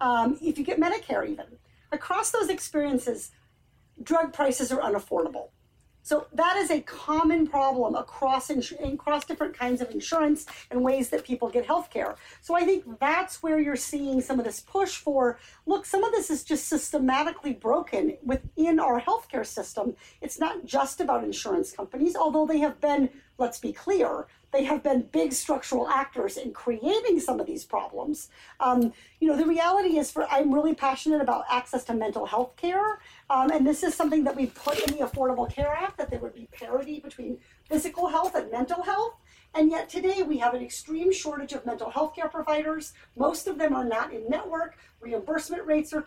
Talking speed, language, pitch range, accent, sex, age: 185 wpm, English, 265-330 Hz, American, female, 50-69